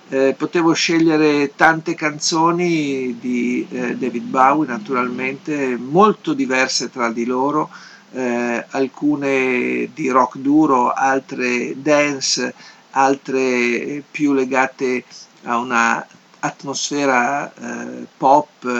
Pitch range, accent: 125-150 Hz, native